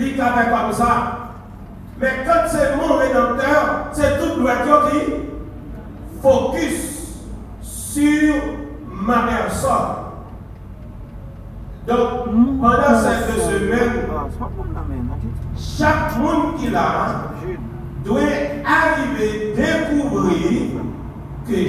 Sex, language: male, French